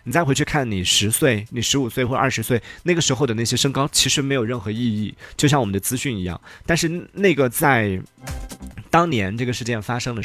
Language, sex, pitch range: Chinese, male, 100-140 Hz